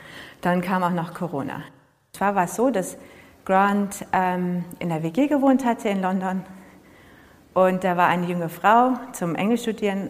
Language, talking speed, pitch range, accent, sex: German, 160 wpm, 175-205 Hz, German, female